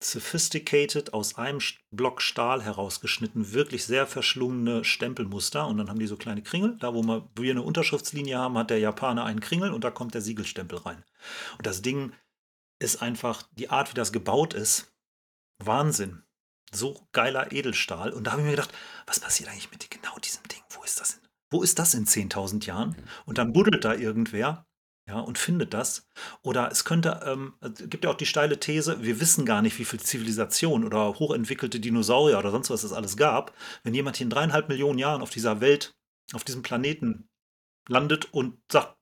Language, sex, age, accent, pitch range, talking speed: German, male, 40-59, German, 115-155 Hz, 185 wpm